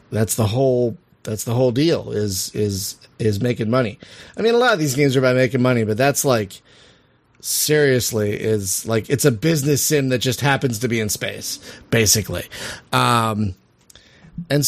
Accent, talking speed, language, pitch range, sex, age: American, 175 wpm, English, 115-150 Hz, male, 30-49